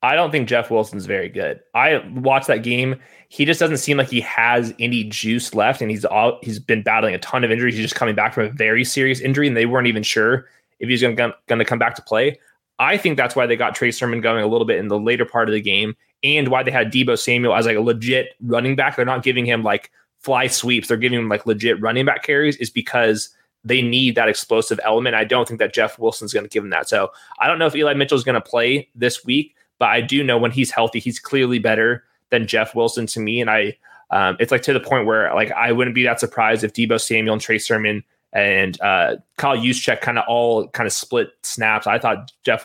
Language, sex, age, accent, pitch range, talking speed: English, male, 20-39, American, 110-130 Hz, 250 wpm